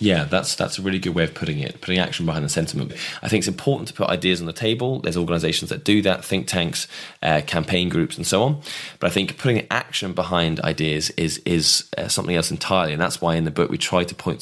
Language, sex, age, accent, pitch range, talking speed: English, male, 20-39, British, 80-100 Hz, 255 wpm